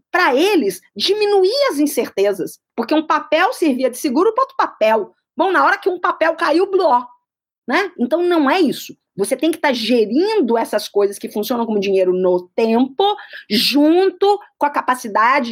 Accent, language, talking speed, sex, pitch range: Brazilian, Portuguese, 175 wpm, female, 240-330 Hz